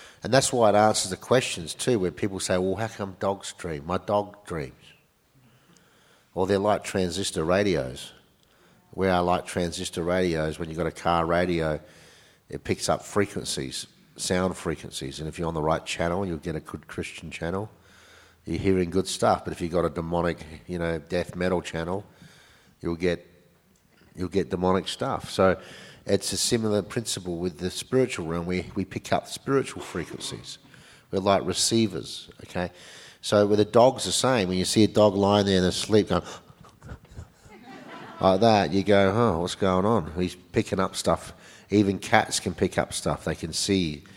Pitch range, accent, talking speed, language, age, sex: 85-105 Hz, Australian, 180 wpm, English, 50-69, male